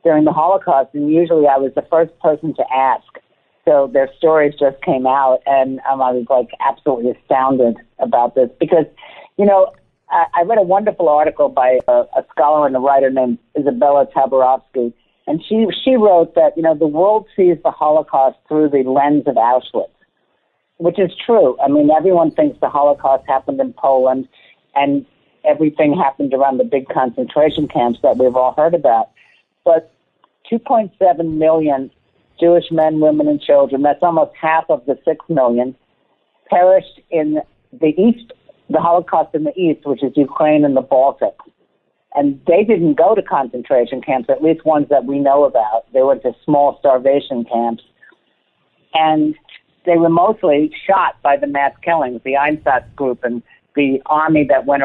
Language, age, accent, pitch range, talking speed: English, 50-69, American, 135-165 Hz, 170 wpm